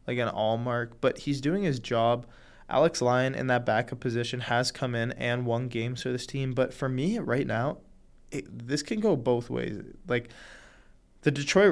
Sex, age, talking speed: male, 20-39, 185 wpm